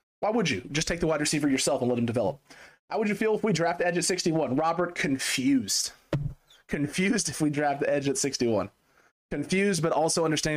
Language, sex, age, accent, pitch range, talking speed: English, male, 20-39, American, 125-155 Hz, 215 wpm